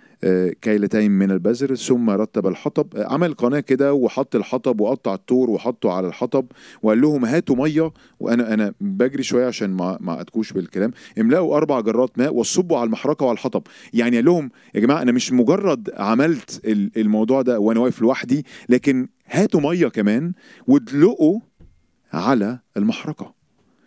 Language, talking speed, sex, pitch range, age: Arabic, 145 wpm, male, 105-140 Hz, 40-59